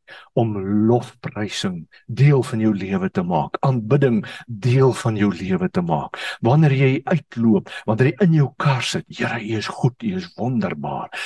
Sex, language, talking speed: male, English, 160 wpm